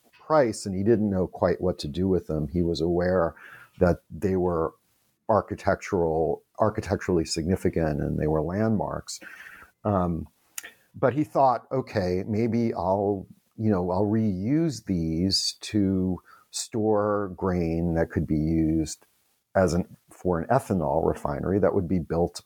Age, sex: 50-69, male